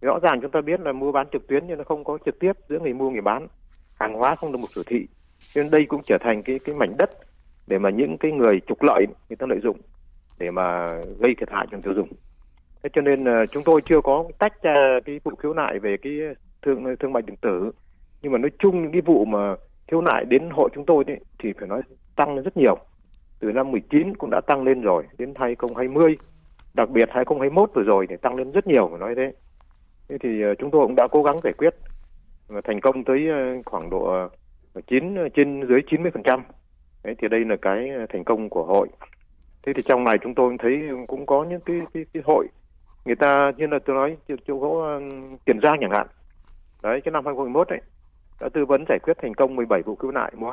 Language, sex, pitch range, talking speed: Vietnamese, male, 100-150 Hz, 225 wpm